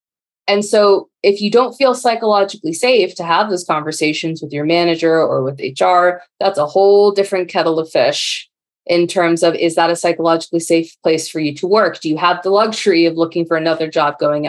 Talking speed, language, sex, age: 205 wpm, English, female, 20-39